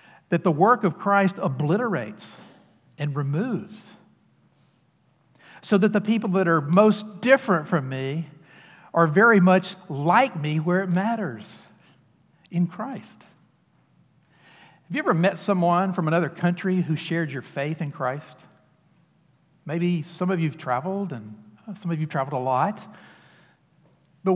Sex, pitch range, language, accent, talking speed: male, 150-185 Hz, English, American, 140 wpm